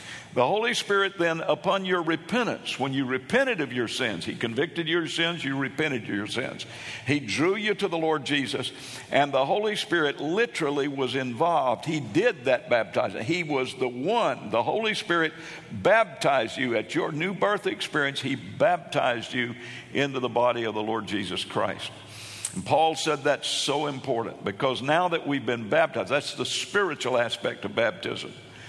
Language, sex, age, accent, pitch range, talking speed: English, male, 60-79, American, 125-170 Hz, 175 wpm